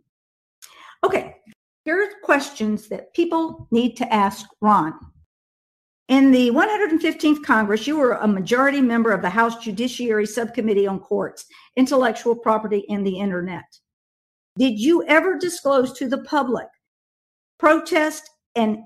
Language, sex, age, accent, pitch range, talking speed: English, female, 50-69, American, 220-295 Hz, 125 wpm